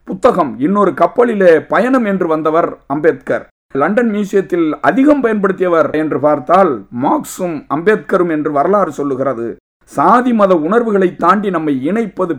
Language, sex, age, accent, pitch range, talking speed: English, male, 50-69, Indian, 140-205 Hz, 110 wpm